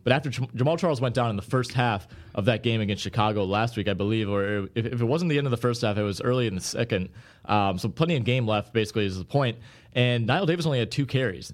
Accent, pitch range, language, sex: American, 105-125 Hz, English, male